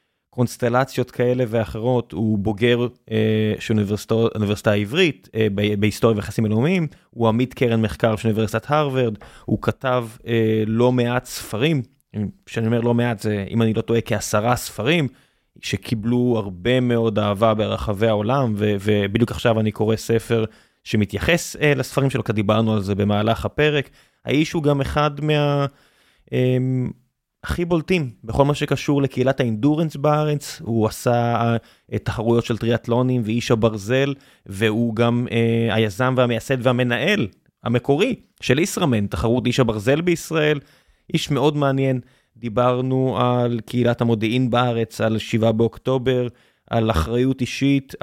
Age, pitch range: 20-39, 110-130 Hz